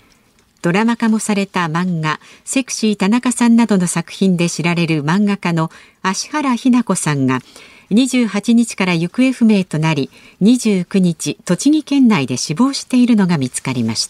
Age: 50-69